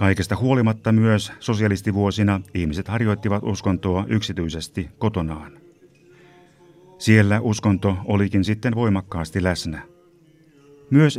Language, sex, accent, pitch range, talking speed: Finnish, male, native, 95-110 Hz, 85 wpm